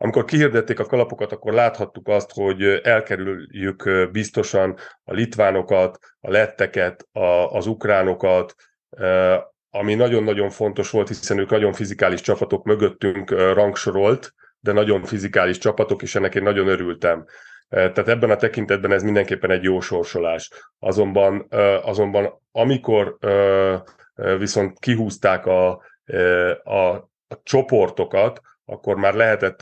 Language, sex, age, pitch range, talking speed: Hungarian, male, 30-49, 95-105 Hz, 115 wpm